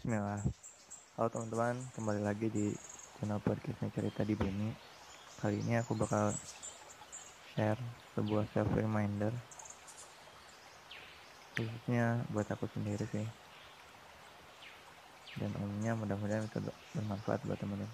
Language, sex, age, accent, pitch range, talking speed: Indonesian, male, 20-39, native, 105-115 Hz, 100 wpm